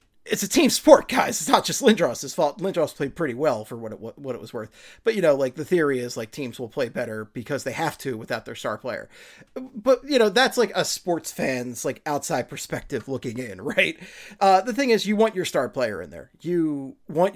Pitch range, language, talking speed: 135-190 Hz, English, 230 wpm